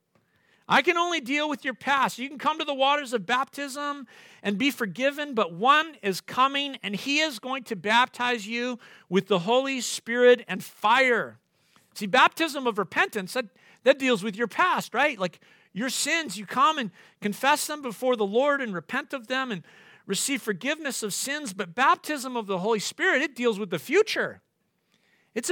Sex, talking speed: male, 185 wpm